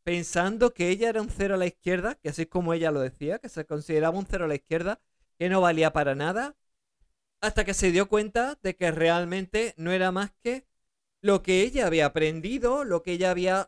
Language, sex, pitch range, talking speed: Spanish, male, 165-205 Hz, 220 wpm